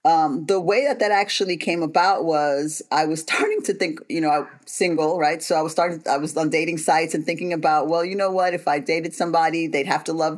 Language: English